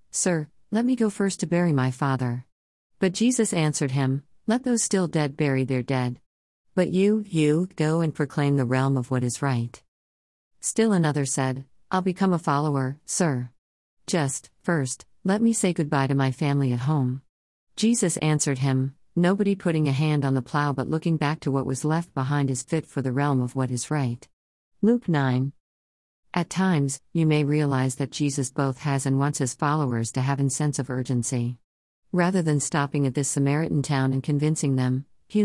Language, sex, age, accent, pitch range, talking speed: English, female, 50-69, American, 130-160 Hz, 185 wpm